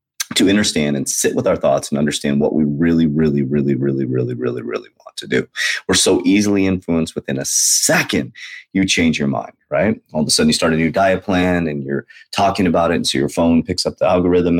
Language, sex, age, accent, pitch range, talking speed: English, male, 30-49, American, 70-85 Hz, 235 wpm